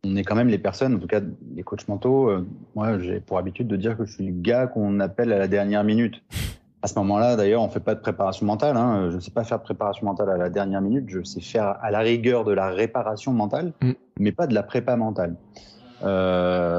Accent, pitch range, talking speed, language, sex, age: French, 100-130 Hz, 255 wpm, French, male, 30-49